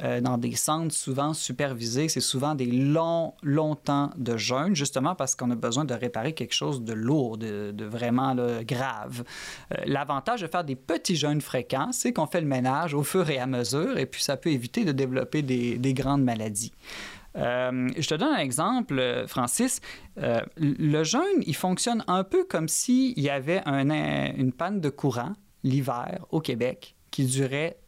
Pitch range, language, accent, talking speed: 135-190 Hz, French, Canadian, 190 wpm